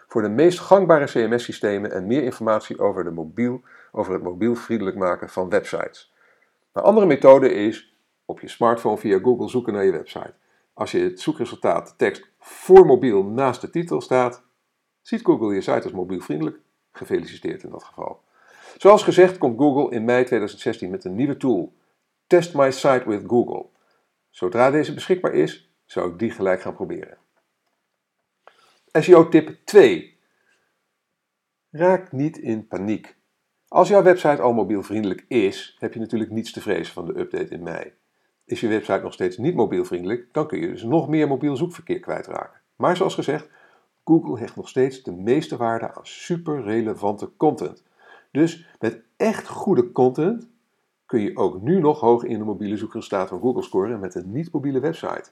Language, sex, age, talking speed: Dutch, male, 50-69, 170 wpm